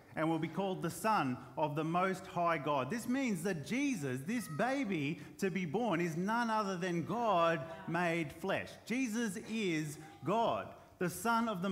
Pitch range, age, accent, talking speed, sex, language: 155-225 Hz, 30-49, Australian, 175 wpm, male, English